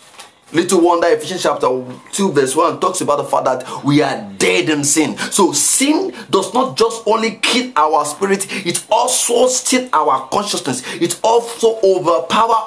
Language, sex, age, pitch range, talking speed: English, male, 30-49, 160-230 Hz, 160 wpm